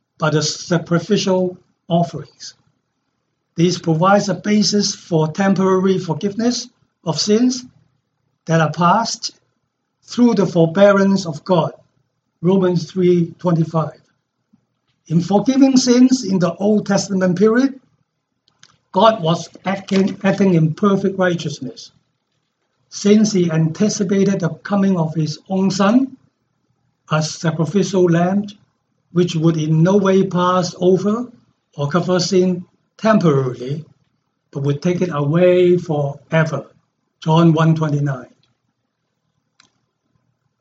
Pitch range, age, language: 160-205 Hz, 60-79, English